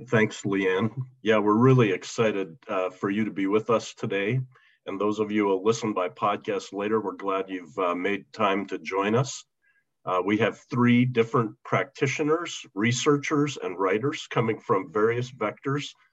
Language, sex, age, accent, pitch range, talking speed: English, male, 50-69, American, 105-130 Hz, 165 wpm